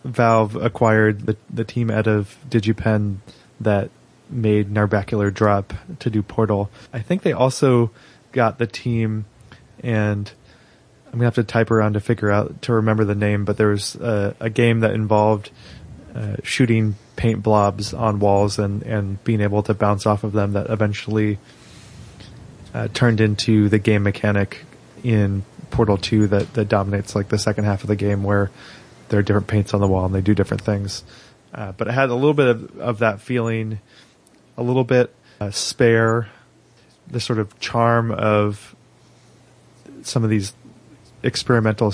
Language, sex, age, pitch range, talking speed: English, male, 20-39, 105-120 Hz, 170 wpm